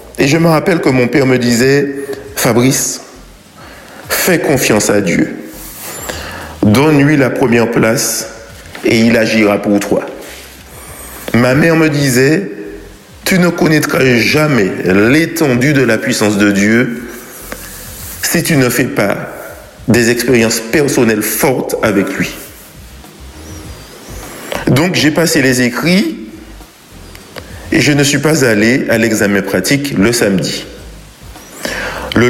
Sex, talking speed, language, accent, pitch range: male, 120 wpm, French, French, 115-155 Hz